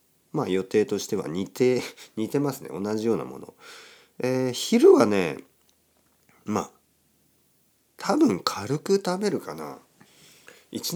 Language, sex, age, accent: Japanese, male, 50-69, native